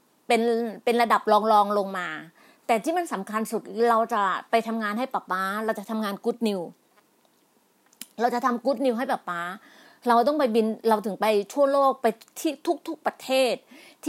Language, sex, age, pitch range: Thai, female, 30-49, 215-270 Hz